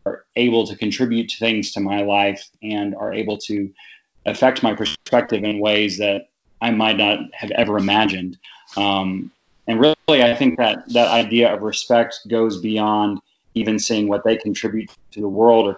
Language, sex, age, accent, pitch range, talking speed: English, male, 30-49, American, 100-110 Hz, 170 wpm